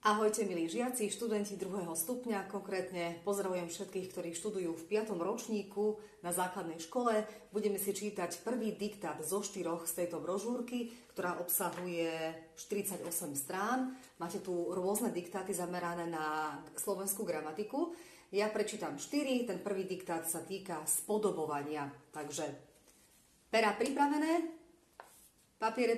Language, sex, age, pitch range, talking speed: Slovak, female, 40-59, 170-220 Hz, 120 wpm